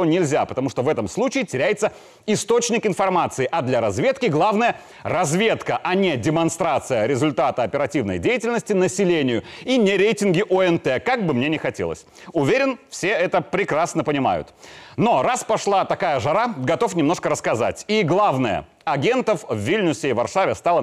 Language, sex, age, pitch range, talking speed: Russian, male, 30-49, 165-215 Hz, 145 wpm